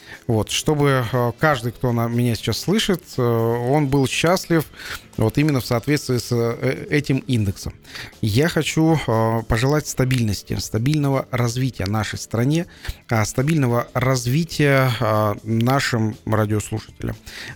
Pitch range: 110-135 Hz